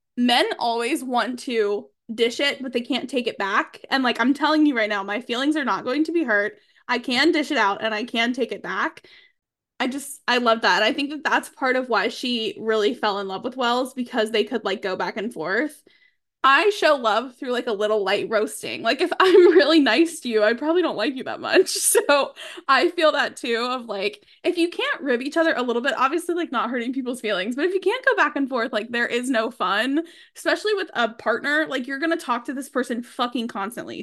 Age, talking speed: 10-29, 240 wpm